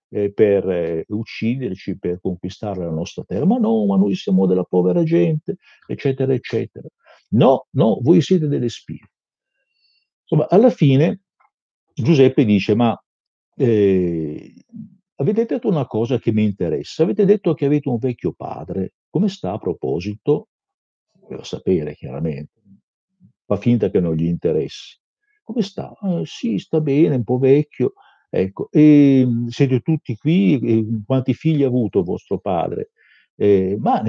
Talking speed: 145 wpm